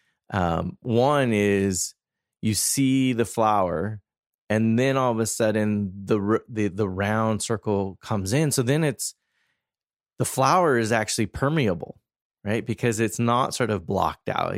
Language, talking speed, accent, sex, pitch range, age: English, 150 wpm, American, male, 95-120 Hz, 30-49